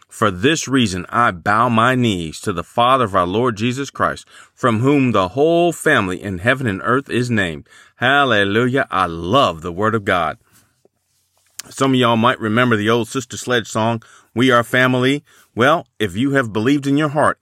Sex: male